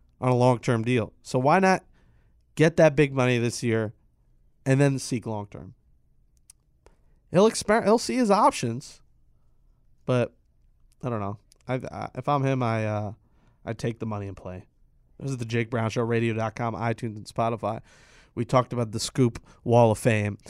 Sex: male